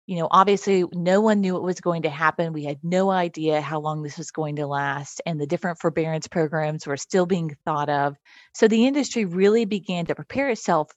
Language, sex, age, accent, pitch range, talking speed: English, female, 30-49, American, 155-190 Hz, 220 wpm